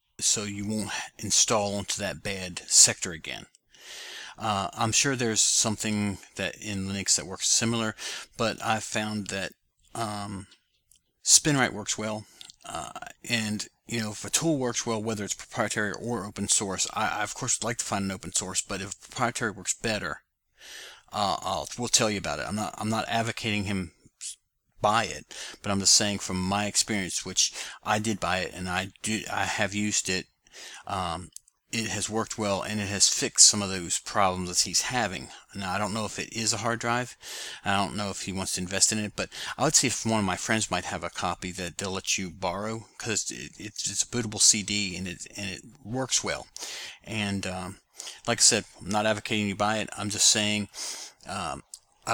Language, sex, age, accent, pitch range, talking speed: English, male, 40-59, American, 95-110 Hz, 205 wpm